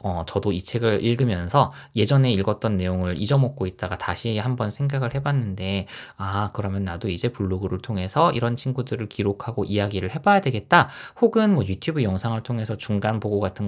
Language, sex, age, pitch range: Korean, male, 20-39, 100-165 Hz